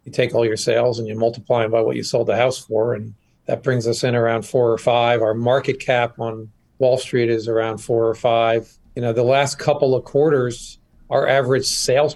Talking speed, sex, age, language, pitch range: 225 wpm, male, 40-59, English, 120-140 Hz